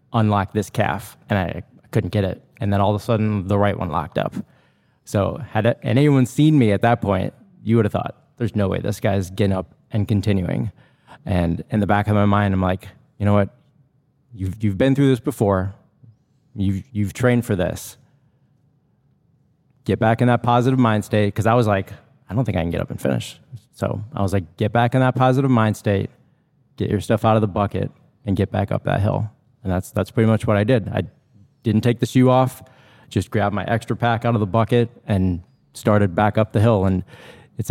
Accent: American